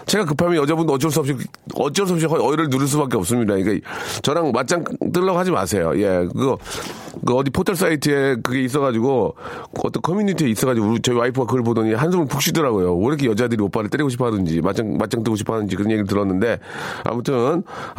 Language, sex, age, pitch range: Korean, male, 40-59, 105-145 Hz